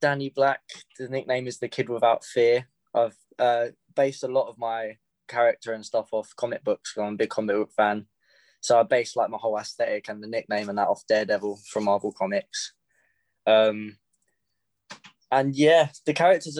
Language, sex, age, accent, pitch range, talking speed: English, male, 20-39, British, 105-135 Hz, 180 wpm